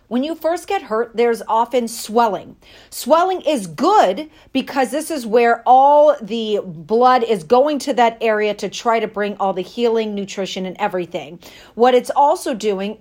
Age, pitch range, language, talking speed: 40-59, 215-295 Hz, English, 170 wpm